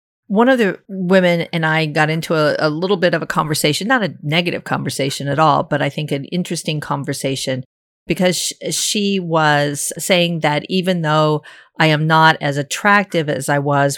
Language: English